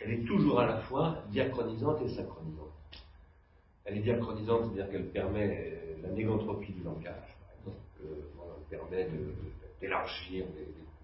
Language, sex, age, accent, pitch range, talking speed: French, male, 40-59, French, 85-110 Hz, 140 wpm